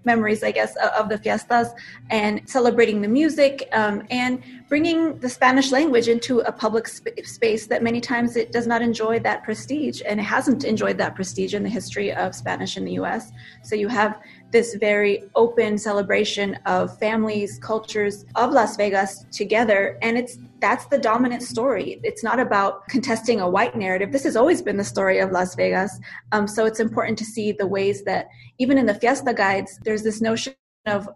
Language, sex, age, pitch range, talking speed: English, female, 30-49, 205-240 Hz, 185 wpm